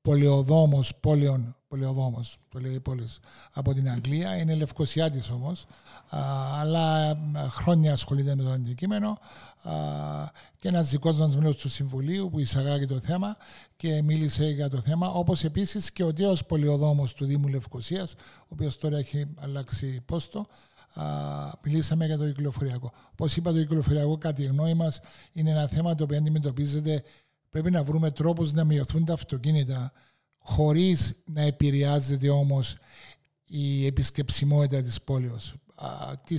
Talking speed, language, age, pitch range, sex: 135 wpm, Greek, 50-69, 135-160 Hz, male